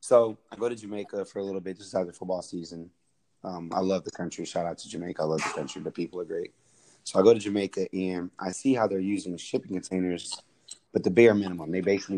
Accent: American